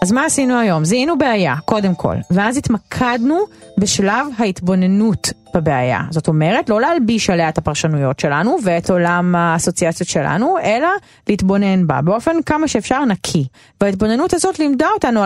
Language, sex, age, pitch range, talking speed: Hebrew, female, 30-49, 165-255 Hz, 140 wpm